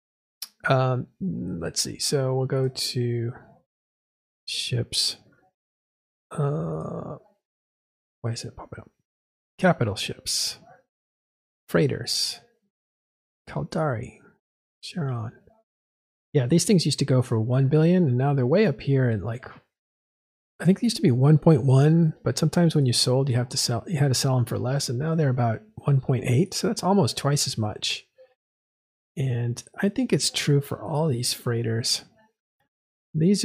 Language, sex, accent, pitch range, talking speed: English, male, American, 120-150 Hz, 145 wpm